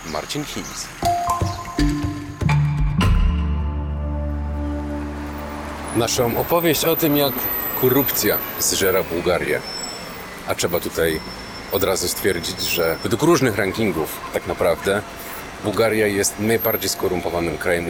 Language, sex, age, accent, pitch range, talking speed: Polish, male, 40-59, native, 85-120 Hz, 90 wpm